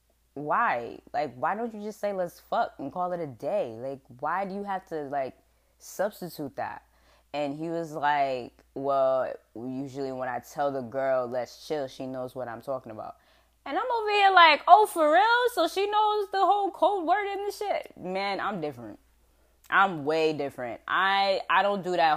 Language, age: English, 10-29